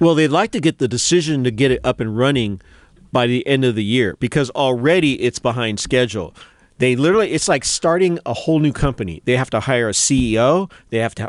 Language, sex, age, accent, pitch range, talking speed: English, male, 40-59, American, 110-145 Hz, 225 wpm